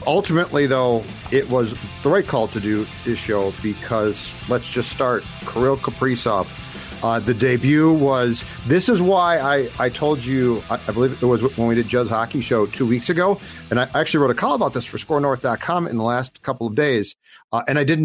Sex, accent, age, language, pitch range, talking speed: male, American, 40-59, English, 115-140 Hz, 205 wpm